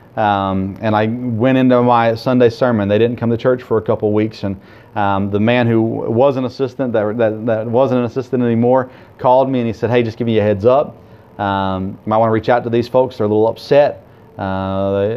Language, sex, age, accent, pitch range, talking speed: English, male, 30-49, American, 105-120 Hz, 230 wpm